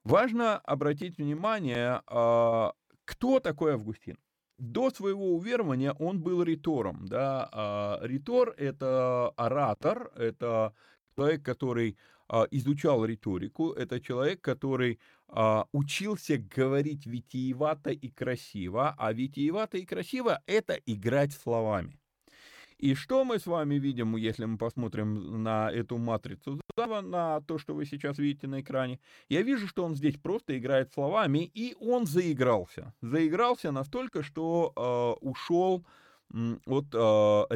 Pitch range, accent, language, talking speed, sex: 115-165 Hz, native, Russian, 120 wpm, male